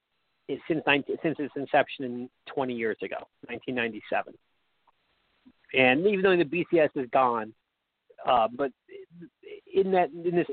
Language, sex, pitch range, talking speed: English, male, 130-175 Hz, 130 wpm